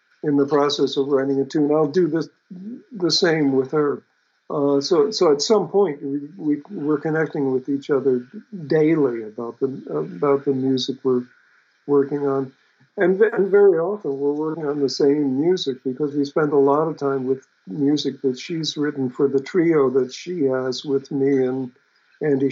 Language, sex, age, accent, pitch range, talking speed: English, male, 50-69, American, 135-155 Hz, 180 wpm